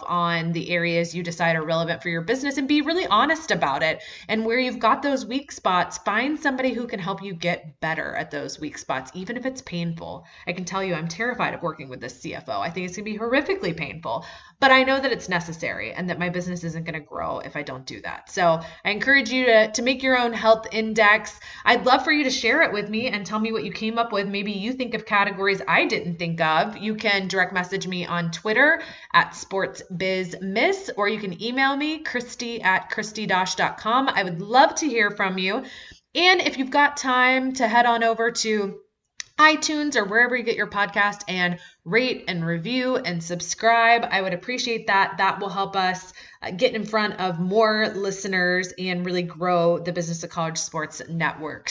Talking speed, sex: 215 wpm, female